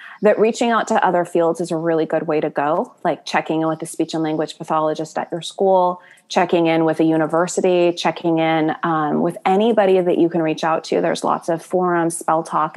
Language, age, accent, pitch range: English, 20-39, American, 165-195 Hz